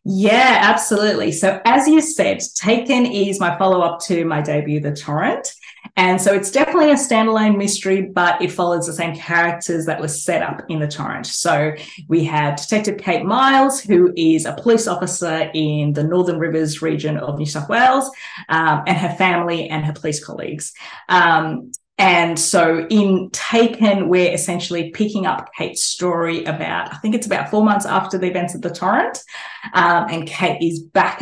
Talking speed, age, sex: 175 wpm, 20-39, female